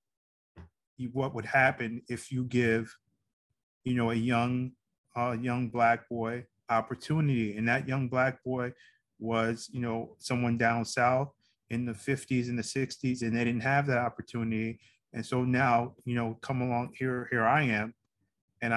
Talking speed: 160 wpm